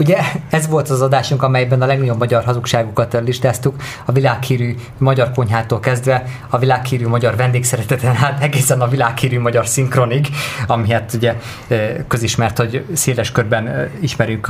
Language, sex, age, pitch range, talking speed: Hungarian, male, 20-39, 125-145 Hz, 140 wpm